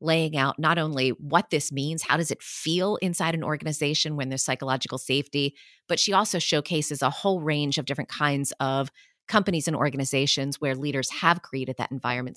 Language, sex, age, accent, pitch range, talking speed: English, female, 30-49, American, 140-180 Hz, 185 wpm